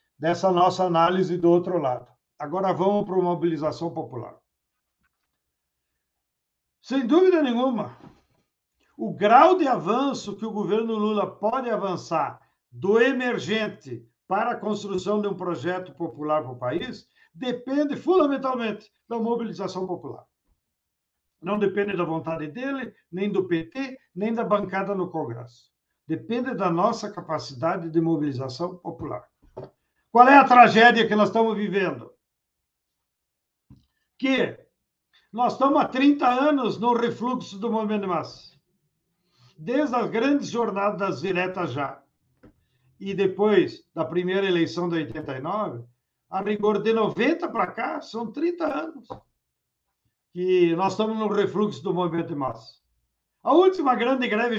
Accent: Brazilian